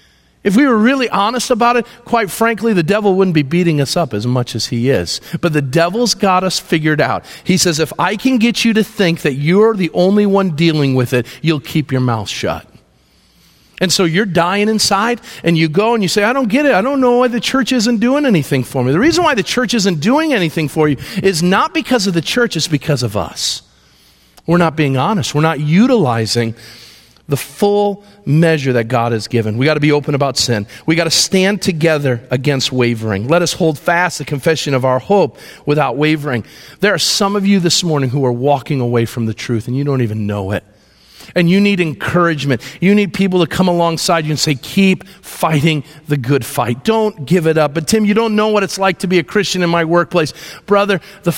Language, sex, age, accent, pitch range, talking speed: English, male, 40-59, American, 140-200 Hz, 225 wpm